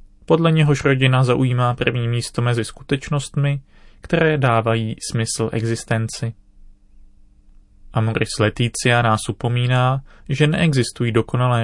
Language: Czech